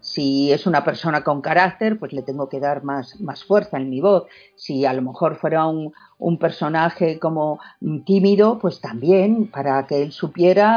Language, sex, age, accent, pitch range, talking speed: Spanish, female, 50-69, Spanish, 145-200 Hz, 185 wpm